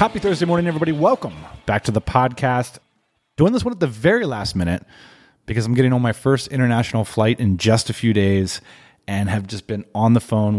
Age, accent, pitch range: 30-49, American, 110-155 Hz